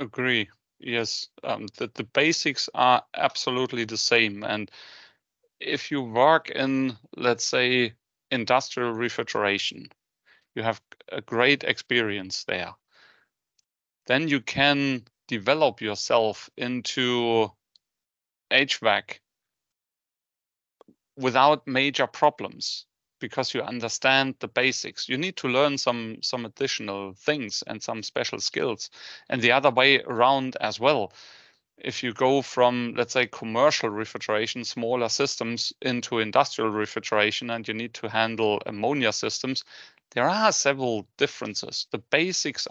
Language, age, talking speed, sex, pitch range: English, 30-49, 120 wpm, male, 110-135 Hz